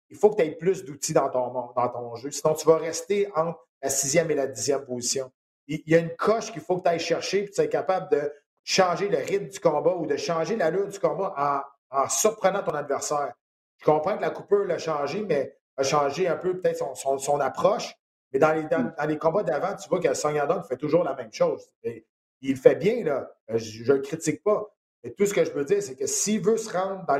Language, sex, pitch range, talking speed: French, male, 145-215 Hz, 260 wpm